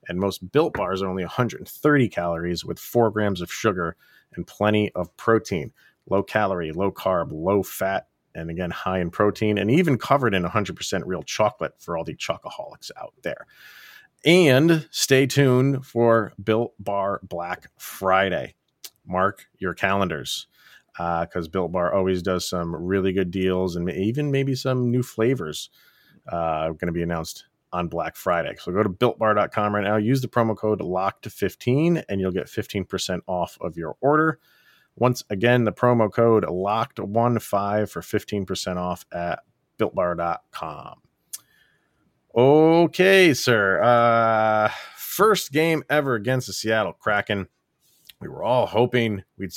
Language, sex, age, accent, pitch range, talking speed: English, male, 30-49, American, 90-120 Hz, 145 wpm